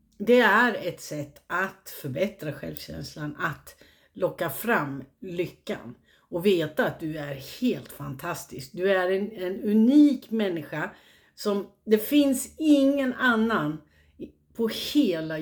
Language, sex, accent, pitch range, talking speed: Swedish, female, native, 160-225 Hz, 120 wpm